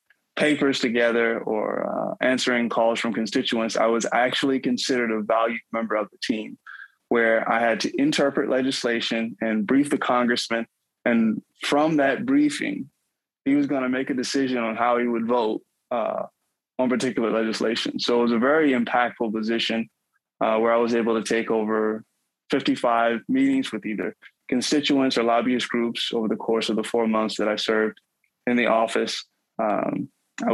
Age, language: 20-39, English